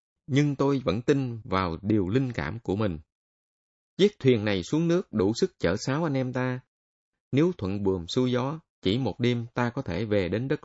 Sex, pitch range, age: male, 95-135 Hz, 20-39